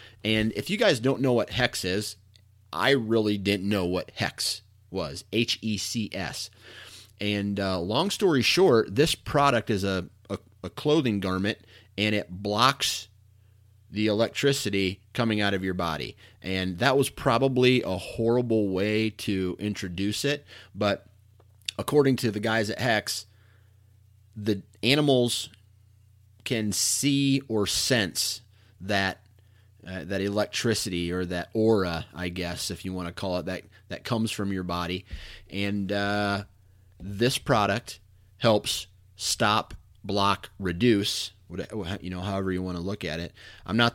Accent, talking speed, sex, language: American, 140 wpm, male, English